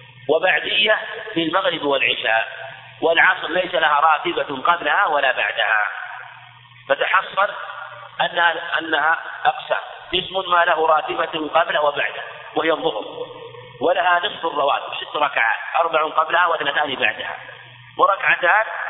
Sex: male